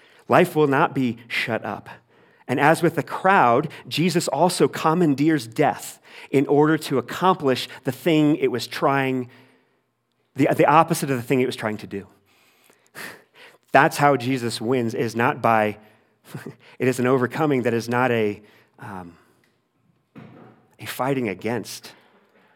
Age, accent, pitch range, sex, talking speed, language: 40-59, American, 115-150 Hz, male, 140 wpm, English